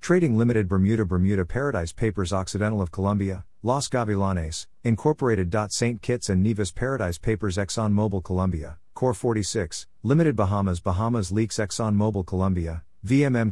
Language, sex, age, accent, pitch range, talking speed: English, male, 50-69, American, 95-115 Hz, 140 wpm